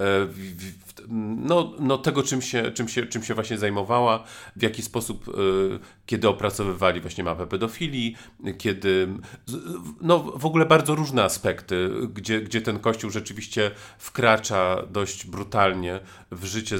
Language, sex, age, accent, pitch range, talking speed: Polish, male, 40-59, native, 95-115 Hz, 140 wpm